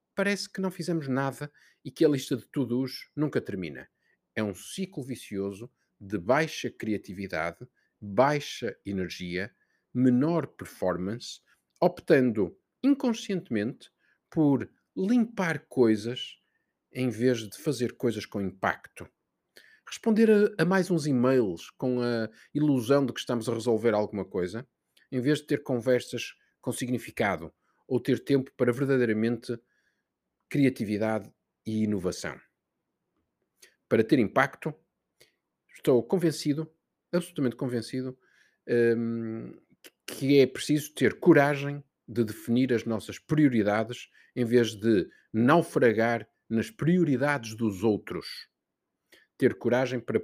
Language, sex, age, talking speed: Portuguese, male, 50-69, 110 wpm